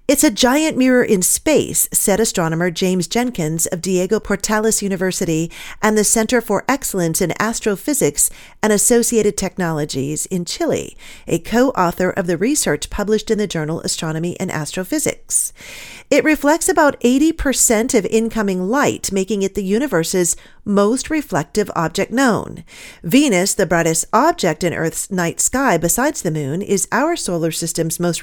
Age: 40-59